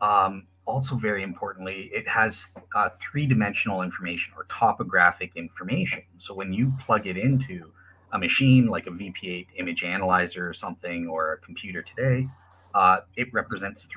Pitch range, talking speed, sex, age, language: 90-125 Hz, 145 wpm, male, 30-49, English